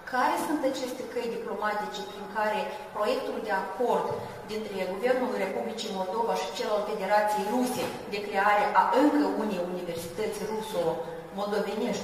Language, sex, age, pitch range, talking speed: Romanian, female, 30-49, 185-250 Hz, 135 wpm